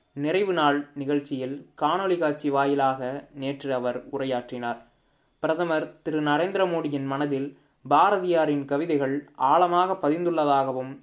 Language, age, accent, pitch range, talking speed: Tamil, 20-39, native, 135-160 Hz, 100 wpm